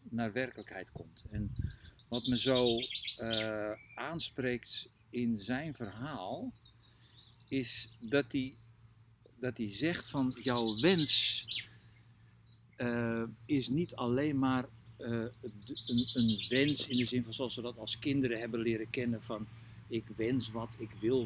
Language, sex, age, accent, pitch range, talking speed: Dutch, male, 50-69, Dutch, 110-130 Hz, 135 wpm